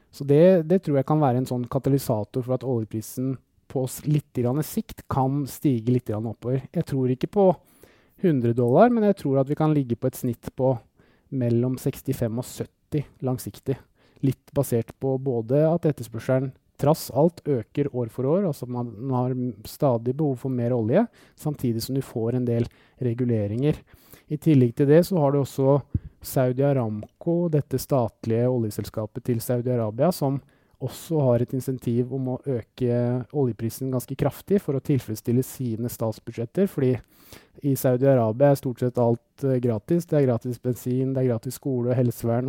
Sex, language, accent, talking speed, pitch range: male, English, Norwegian, 170 wpm, 120-145 Hz